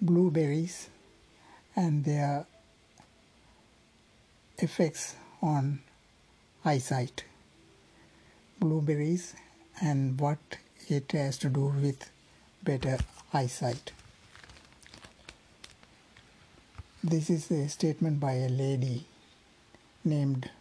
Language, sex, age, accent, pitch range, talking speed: Tamil, male, 60-79, native, 130-155 Hz, 70 wpm